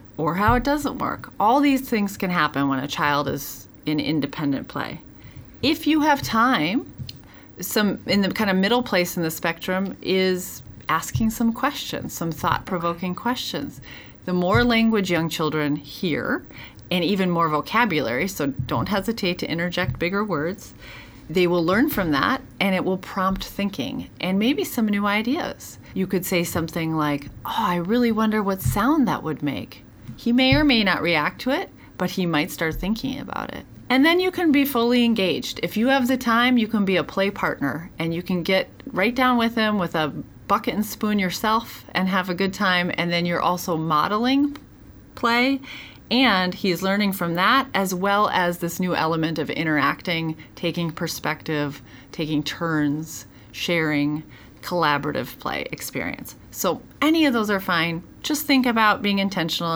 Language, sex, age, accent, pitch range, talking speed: English, female, 30-49, American, 155-220 Hz, 175 wpm